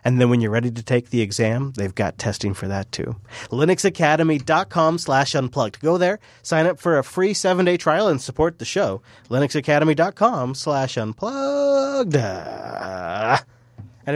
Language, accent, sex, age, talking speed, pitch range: English, American, male, 30-49, 150 wpm, 120-180 Hz